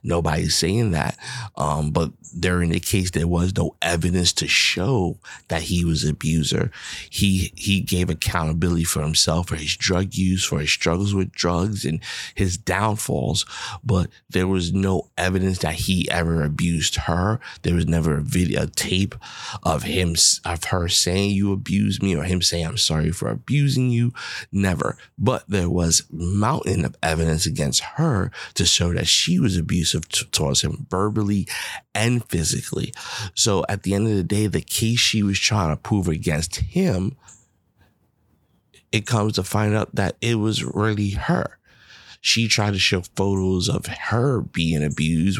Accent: American